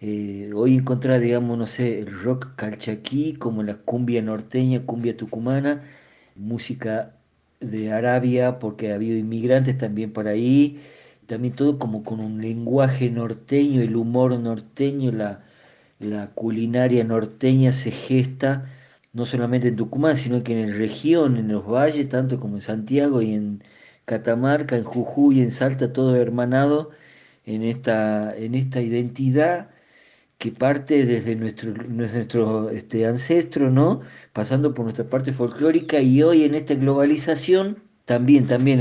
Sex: male